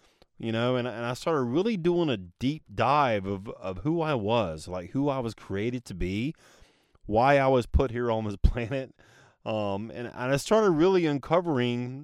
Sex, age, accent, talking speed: male, 30-49, American, 190 wpm